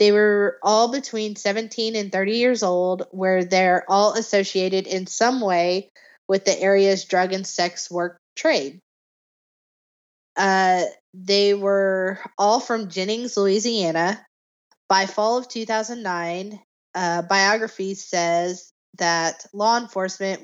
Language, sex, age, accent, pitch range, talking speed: English, female, 20-39, American, 180-210 Hz, 120 wpm